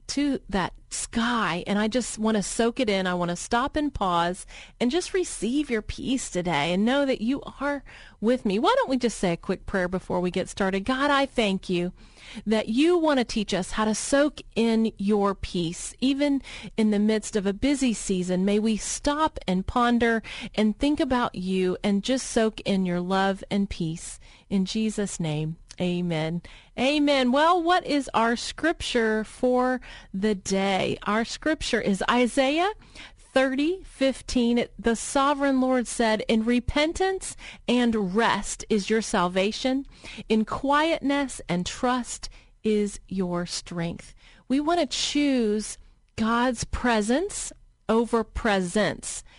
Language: English